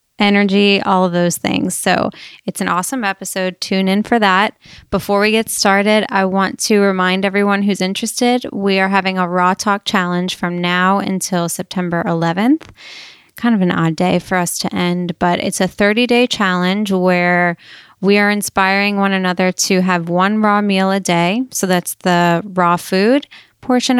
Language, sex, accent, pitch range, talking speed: English, female, American, 180-205 Hz, 180 wpm